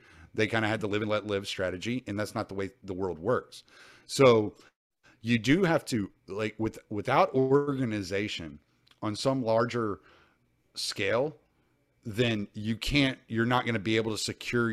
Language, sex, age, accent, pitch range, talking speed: English, male, 40-59, American, 100-120 Hz, 170 wpm